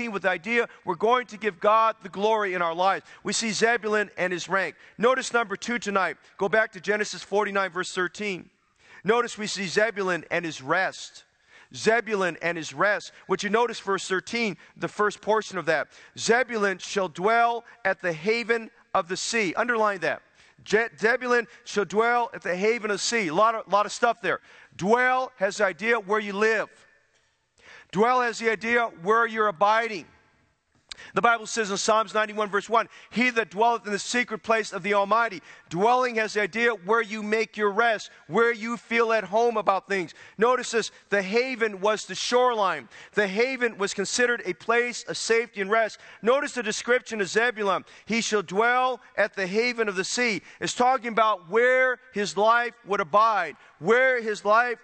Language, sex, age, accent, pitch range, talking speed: English, male, 40-59, American, 200-235 Hz, 185 wpm